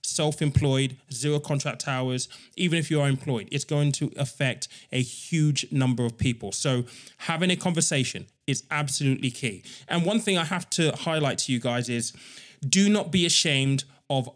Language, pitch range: English, 125-150 Hz